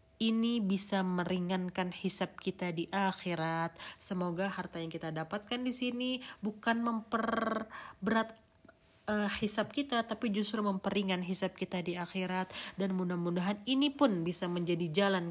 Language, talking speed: Indonesian, 130 wpm